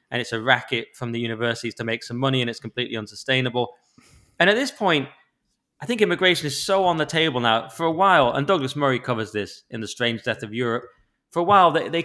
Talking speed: 235 wpm